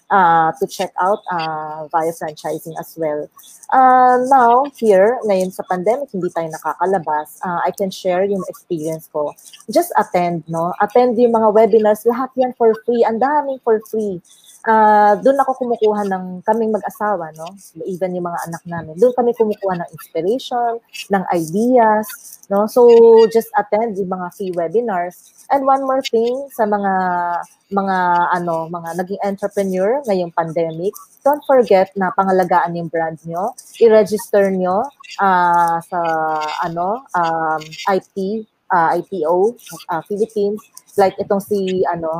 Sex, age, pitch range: female, 30-49, 170-230 Hz